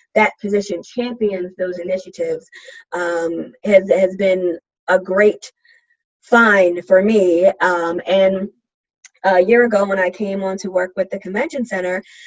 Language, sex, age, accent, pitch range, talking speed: English, female, 20-39, American, 185-220 Hz, 140 wpm